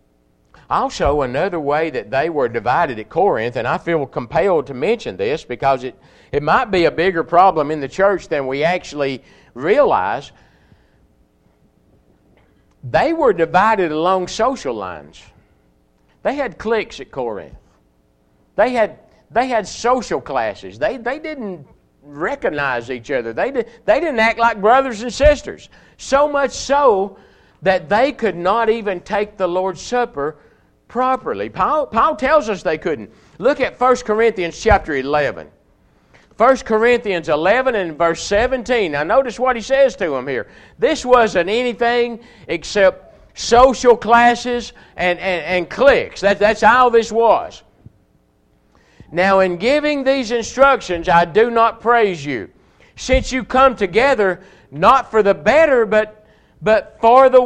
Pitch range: 170-245 Hz